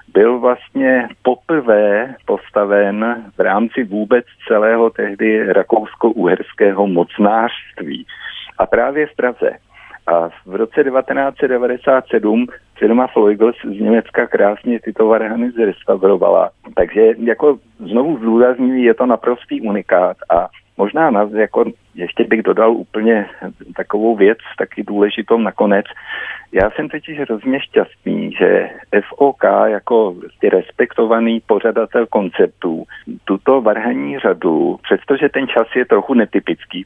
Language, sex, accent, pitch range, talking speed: Czech, male, native, 105-130 Hz, 110 wpm